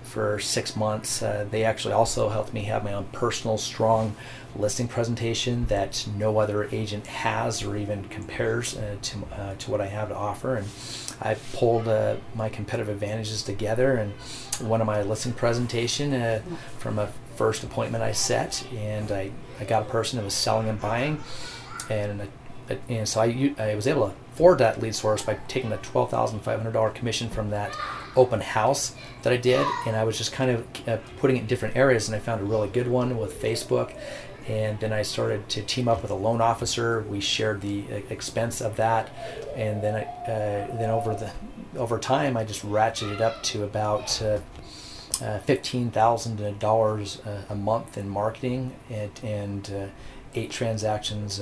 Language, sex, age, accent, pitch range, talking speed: English, male, 30-49, American, 105-125 Hz, 185 wpm